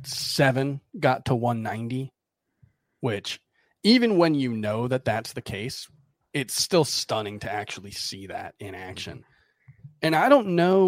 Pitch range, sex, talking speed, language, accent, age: 110-145 Hz, male, 145 wpm, English, American, 30-49